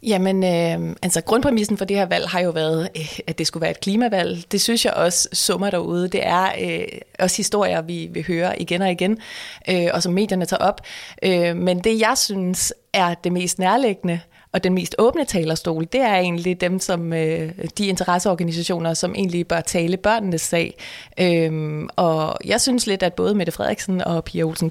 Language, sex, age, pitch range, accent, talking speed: Danish, female, 30-49, 175-210 Hz, native, 180 wpm